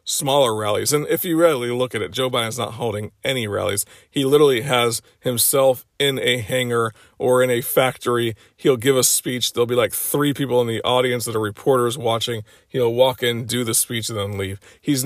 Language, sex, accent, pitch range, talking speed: English, male, American, 115-145 Hz, 205 wpm